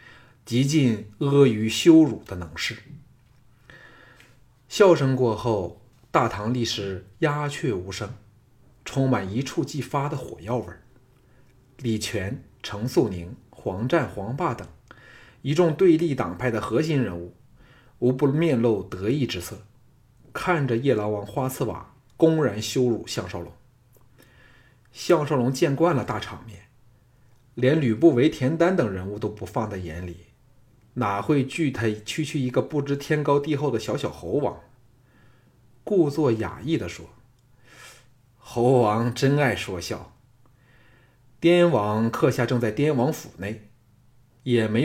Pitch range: 110-130 Hz